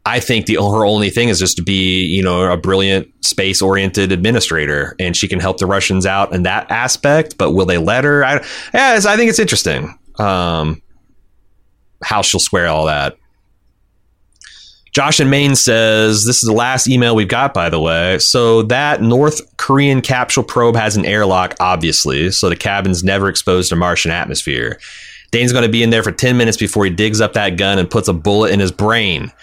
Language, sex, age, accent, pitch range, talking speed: English, male, 30-49, American, 95-125 Hz, 200 wpm